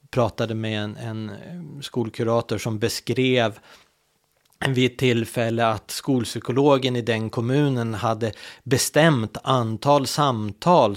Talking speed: 105 wpm